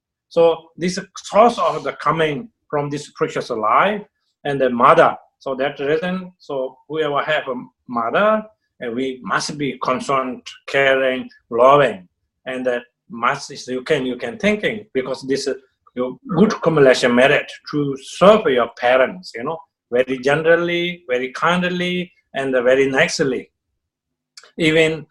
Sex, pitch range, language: male, 130-175 Hz, English